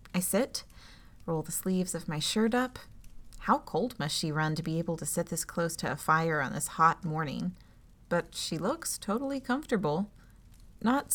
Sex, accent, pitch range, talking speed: female, American, 160-220 Hz, 185 wpm